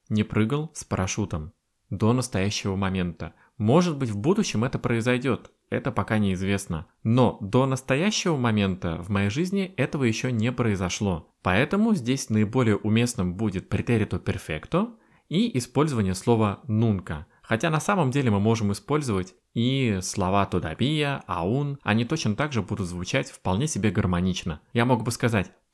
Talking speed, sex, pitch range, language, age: 145 wpm, male, 95-130 Hz, Russian, 20-39